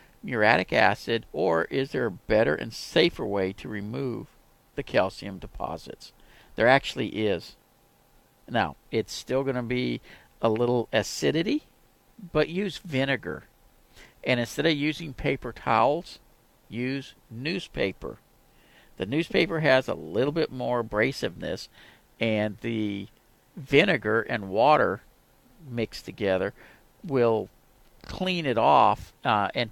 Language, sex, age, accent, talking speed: English, male, 50-69, American, 120 wpm